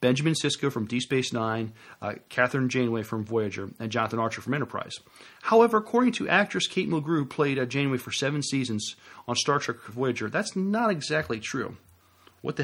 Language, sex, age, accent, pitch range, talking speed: English, male, 40-59, American, 115-145 Hz, 180 wpm